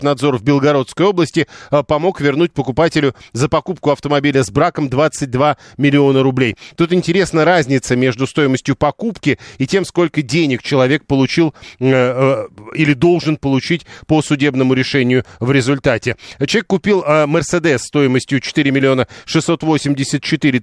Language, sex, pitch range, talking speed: Russian, male, 135-165 Hz, 120 wpm